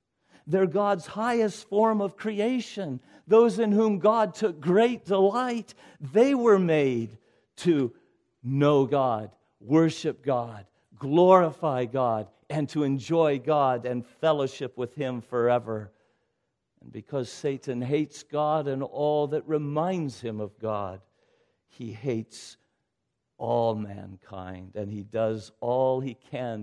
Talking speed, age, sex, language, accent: 120 wpm, 60-79, male, English, American